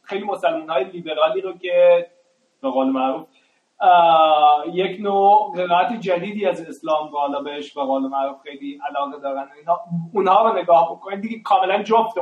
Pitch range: 150-210 Hz